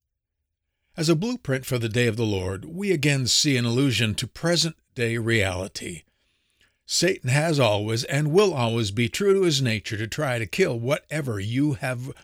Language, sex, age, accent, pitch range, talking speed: English, male, 50-69, American, 100-135 Hz, 170 wpm